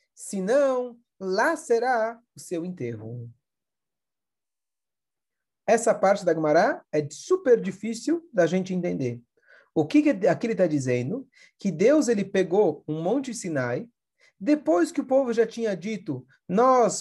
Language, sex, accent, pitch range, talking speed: Portuguese, male, Brazilian, 155-245 Hz, 135 wpm